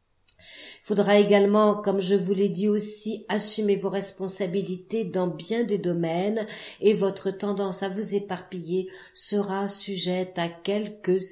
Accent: French